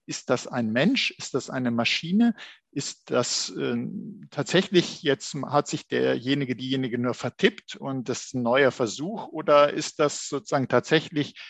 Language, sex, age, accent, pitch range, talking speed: German, male, 50-69, German, 125-160 Hz, 155 wpm